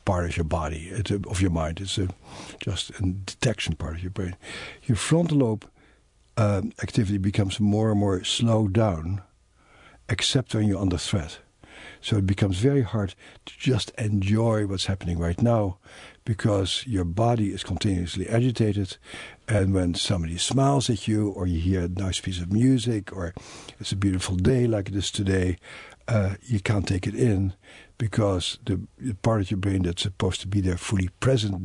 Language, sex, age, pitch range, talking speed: English, male, 60-79, 90-110 Hz, 175 wpm